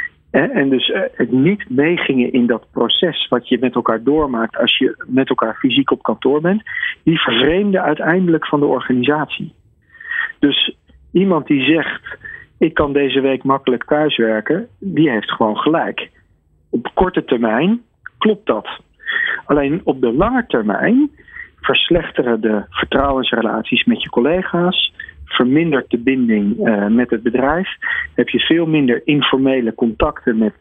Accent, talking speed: Dutch, 140 wpm